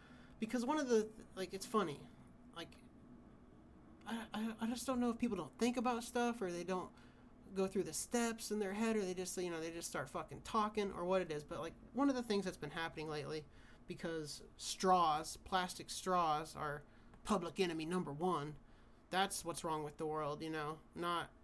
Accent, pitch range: American, 165-220 Hz